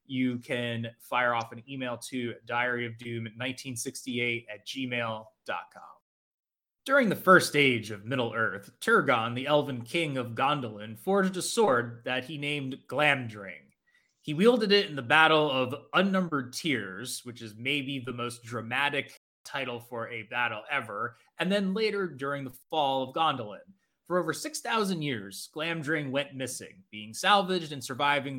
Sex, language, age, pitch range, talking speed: male, English, 20-39, 120-160 Hz, 145 wpm